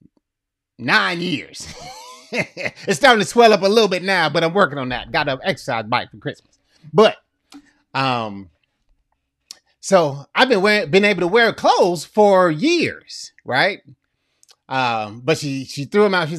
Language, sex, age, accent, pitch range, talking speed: English, male, 30-49, American, 130-195 Hz, 160 wpm